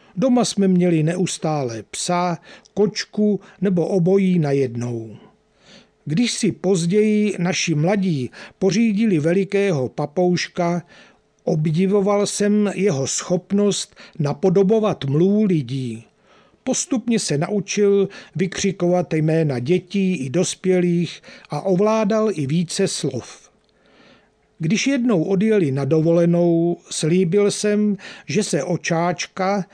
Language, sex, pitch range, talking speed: Czech, male, 160-205 Hz, 95 wpm